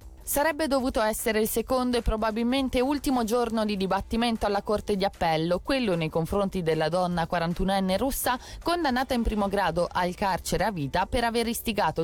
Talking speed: 165 wpm